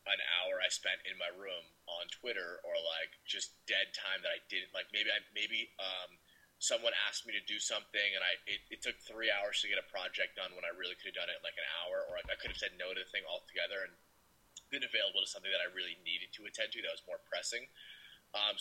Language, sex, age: English, male, 30-49